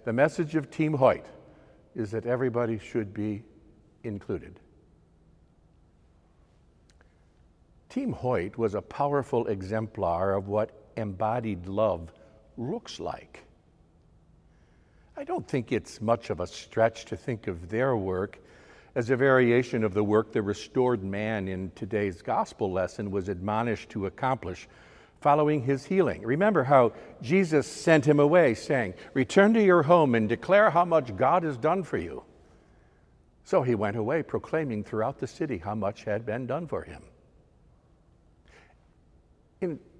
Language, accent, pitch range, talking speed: English, American, 95-130 Hz, 140 wpm